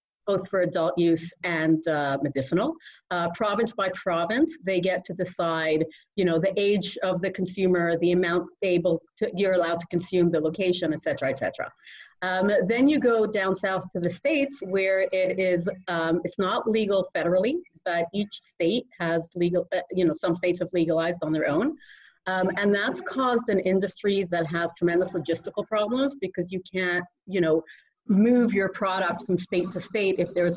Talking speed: 180 wpm